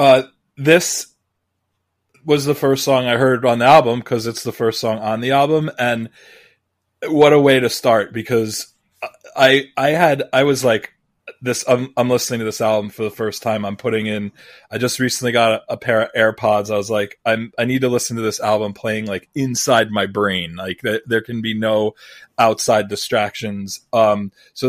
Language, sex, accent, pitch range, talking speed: English, male, American, 110-135 Hz, 190 wpm